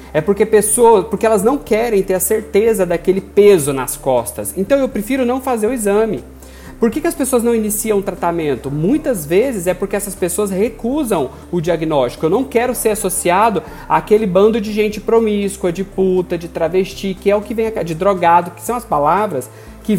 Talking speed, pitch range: 200 wpm, 160-220 Hz